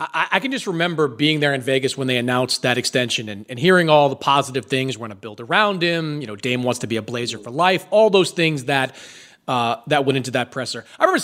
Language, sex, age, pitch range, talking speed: English, male, 30-49, 150-230 Hz, 250 wpm